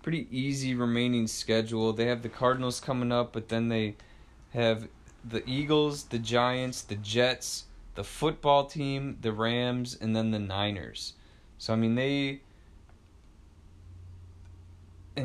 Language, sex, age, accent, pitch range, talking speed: English, male, 20-39, American, 105-125 Hz, 135 wpm